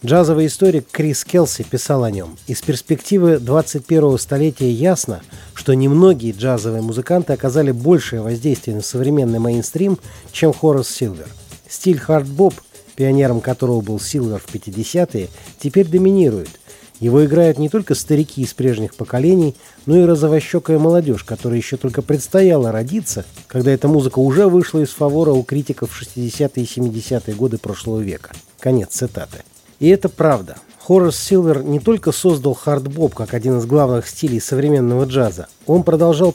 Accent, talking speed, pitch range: native, 145 wpm, 120-160 Hz